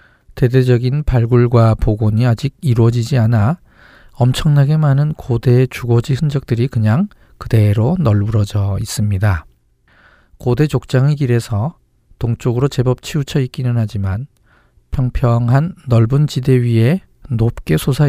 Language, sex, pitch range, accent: Korean, male, 110-135 Hz, native